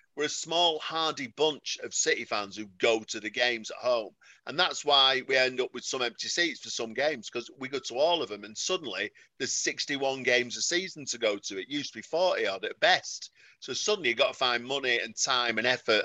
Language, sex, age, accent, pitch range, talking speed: English, male, 40-59, British, 115-155 Hz, 240 wpm